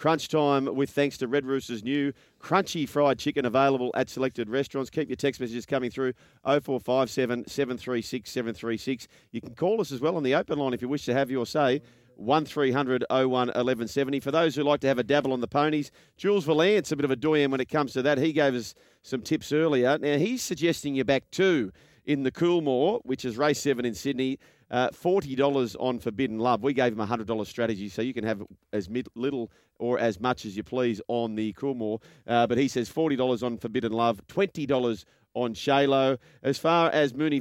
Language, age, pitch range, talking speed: English, 40-59, 125-160 Hz, 210 wpm